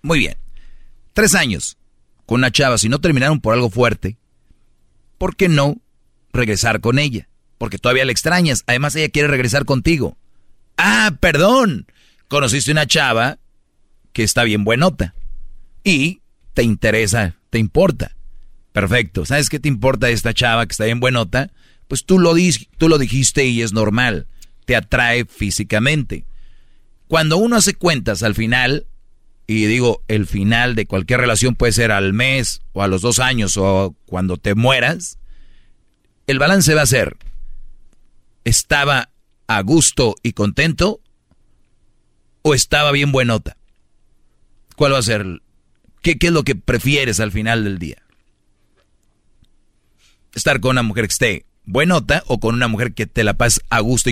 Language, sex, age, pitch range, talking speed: Spanish, male, 40-59, 110-145 Hz, 155 wpm